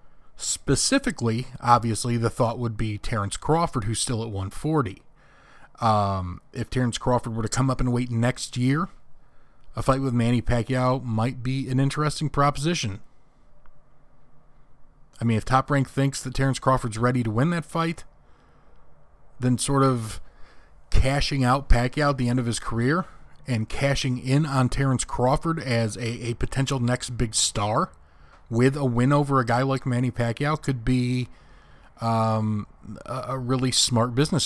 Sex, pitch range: male, 115-135 Hz